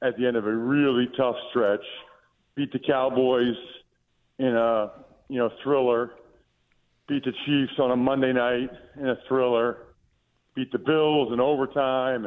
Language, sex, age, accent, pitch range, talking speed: English, male, 50-69, American, 120-145 Hz, 150 wpm